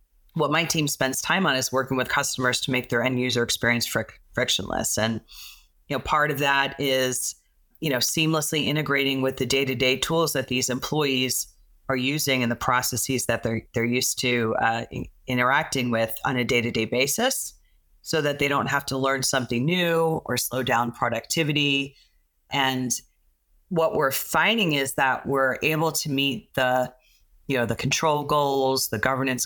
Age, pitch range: 30-49, 120-140 Hz